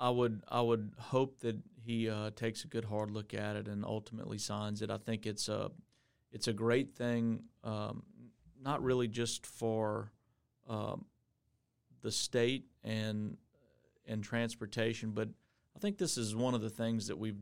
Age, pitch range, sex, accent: 40-59, 105-115 Hz, male, American